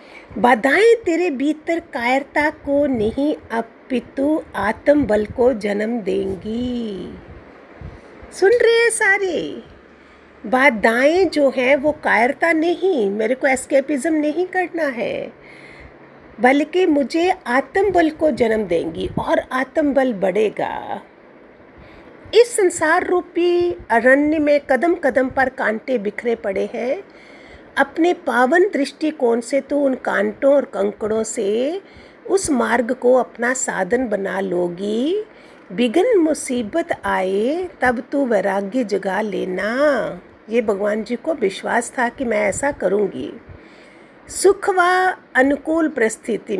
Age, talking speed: 50-69, 110 wpm